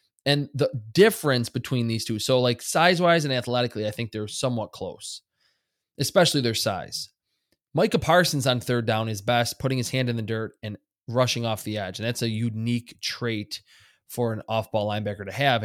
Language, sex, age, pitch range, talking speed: English, male, 20-39, 110-140 Hz, 185 wpm